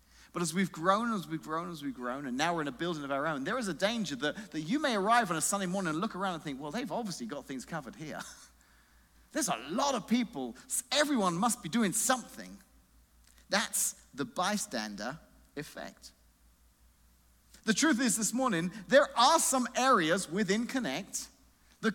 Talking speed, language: 190 wpm, English